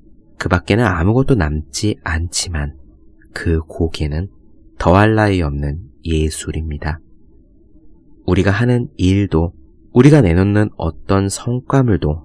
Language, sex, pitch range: Korean, male, 80-100 Hz